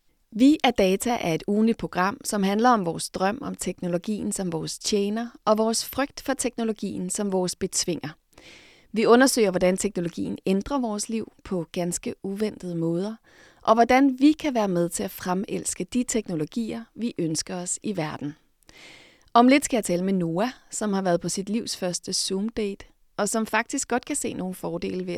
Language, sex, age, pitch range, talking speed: Danish, female, 30-49, 180-230 Hz, 180 wpm